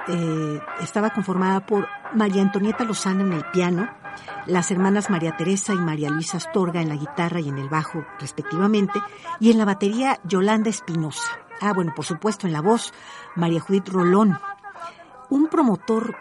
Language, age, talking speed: Spanish, 50-69, 165 wpm